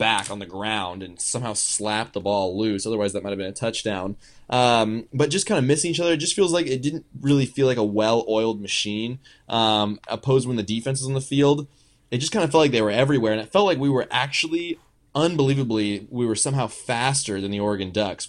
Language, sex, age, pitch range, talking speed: English, male, 20-39, 105-135 Hz, 235 wpm